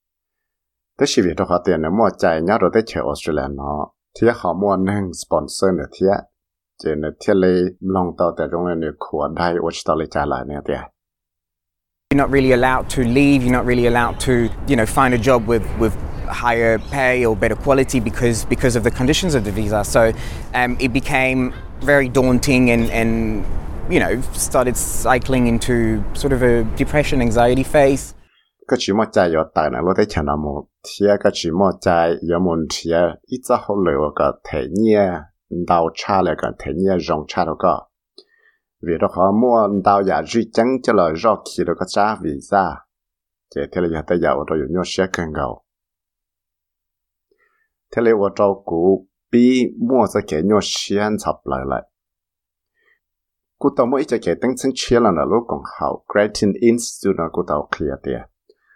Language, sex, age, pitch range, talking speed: English, male, 20-39, 85-125 Hz, 55 wpm